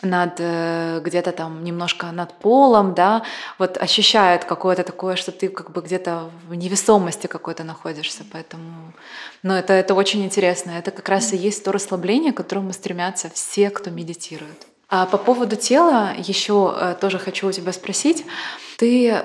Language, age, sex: Russian, 20-39, female